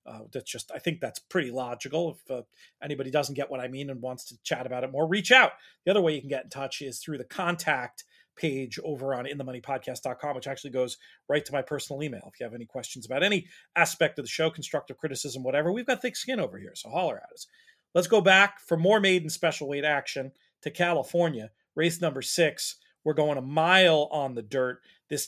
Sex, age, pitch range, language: male, 40-59, 135-170 Hz, English